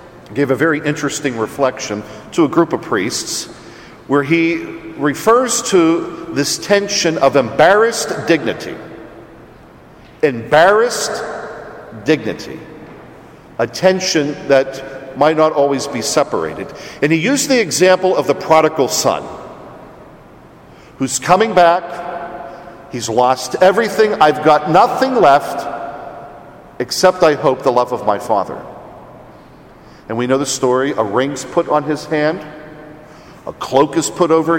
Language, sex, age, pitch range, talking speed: English, male, 50-69, 135-175 Hz, 125 wpm